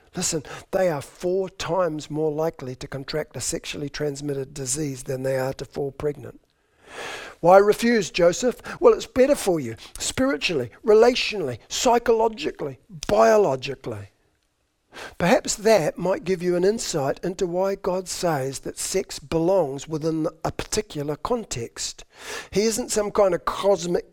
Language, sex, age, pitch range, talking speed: English, male, 50-69, 140-185 Hz, 135 wpm